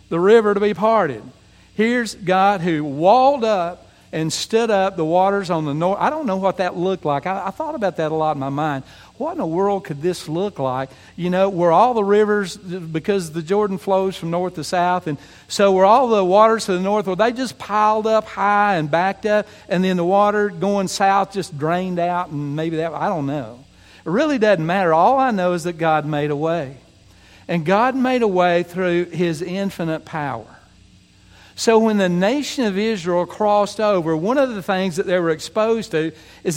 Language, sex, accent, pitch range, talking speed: English, male, American, 160-205 Hz, 215 wpm